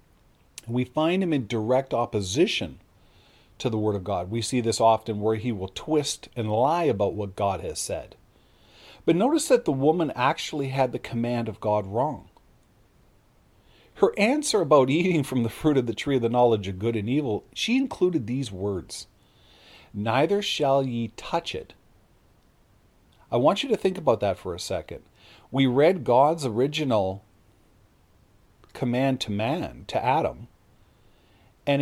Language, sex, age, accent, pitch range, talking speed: English, male, 40-59, American, 105-140 Hz, 160 wpm